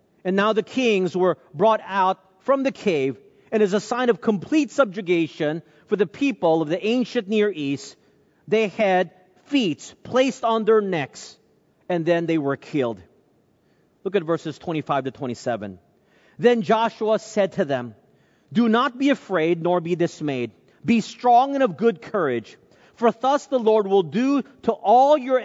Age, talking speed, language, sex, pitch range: 40-59, 165 wpm, English, male, 165-225 Hz